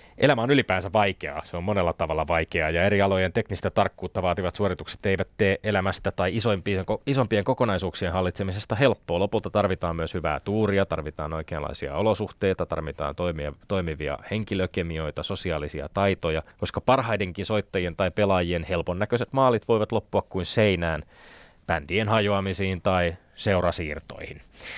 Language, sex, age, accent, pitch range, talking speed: Finnish, male, 30-49, native, 85-110 Hz, 130 wpm